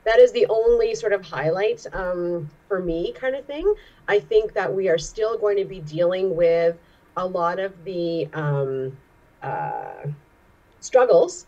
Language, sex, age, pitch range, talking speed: English, female, 30-49, 165-215 Hz, 160 wpm